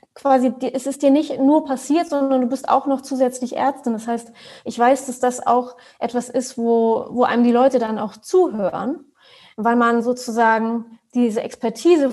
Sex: female